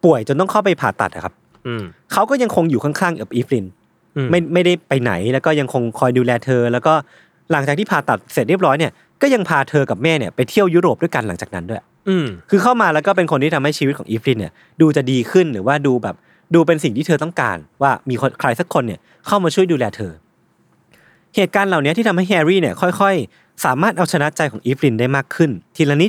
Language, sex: Thai, male